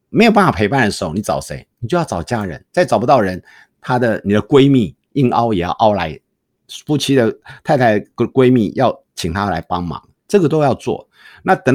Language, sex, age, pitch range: Chinese, male, 50-69, 100-150 Hz